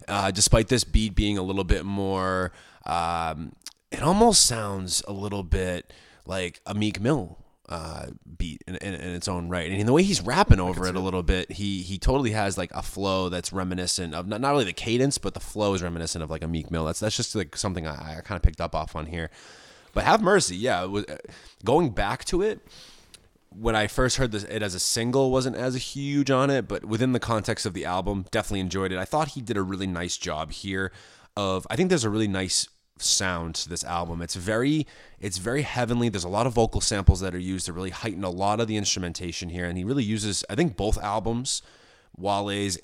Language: English